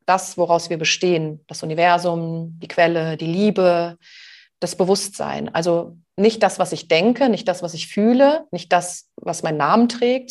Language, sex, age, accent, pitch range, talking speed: German, female, 30-49, German, 175-230 Hz, 170 wpm